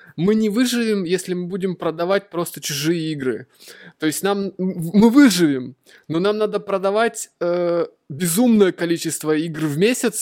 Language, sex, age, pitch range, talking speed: Russian, male, 20-39, 165-215 Hz, 145 wpm